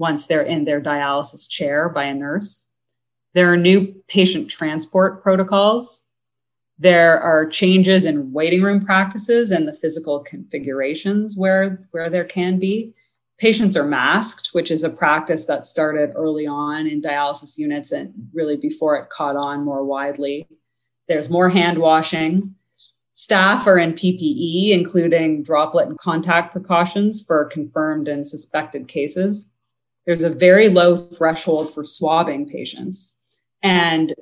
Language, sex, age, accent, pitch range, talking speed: English, female, 30-49, American, 150-180 Hz, 140 wpm